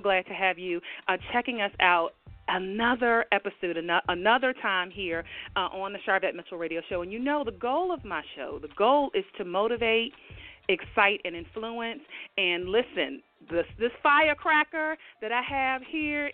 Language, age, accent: English, 40-59, American